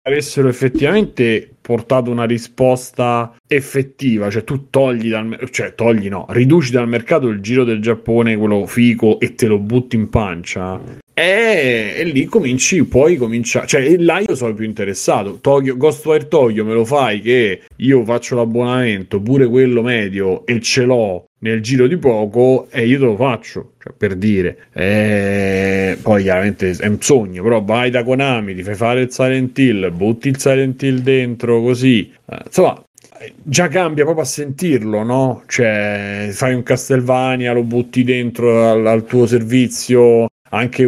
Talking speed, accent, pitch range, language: 165 wpm, native, 110-130 Hz, Italian